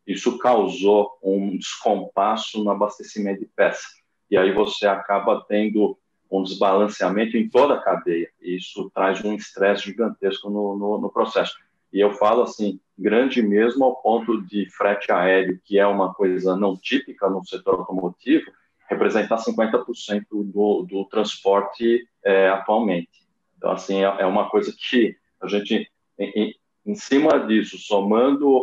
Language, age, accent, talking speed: Portuguese, 40-59, Brazilian, 145 wpm